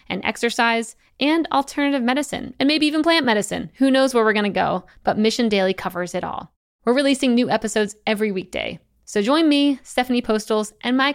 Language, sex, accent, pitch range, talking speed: English, female, American, 185-235 Hz, 195 wpm